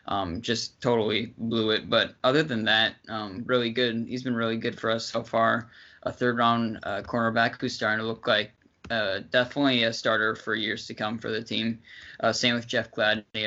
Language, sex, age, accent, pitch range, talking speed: English, male, 20-39, American, 110-120 Hz, 195 wpm